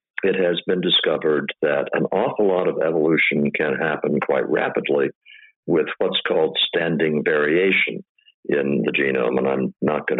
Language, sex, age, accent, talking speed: English, male, 60-79, American, 155 wpm